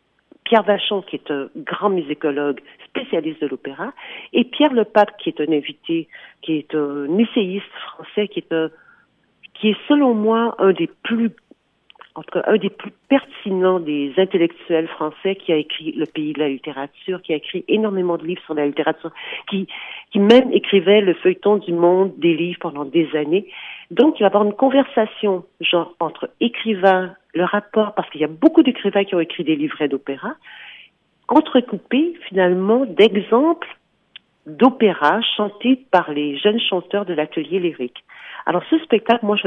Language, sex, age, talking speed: French, female, 50-69, 175 wpm